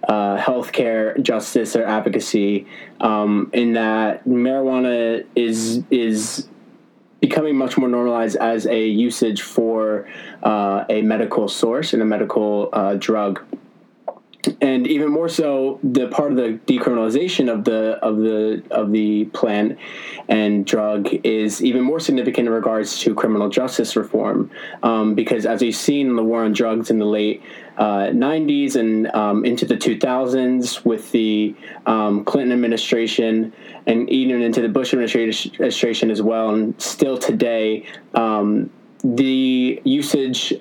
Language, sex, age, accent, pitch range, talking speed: English, male, 20-39, American, 110-125 Hz, 140 wpm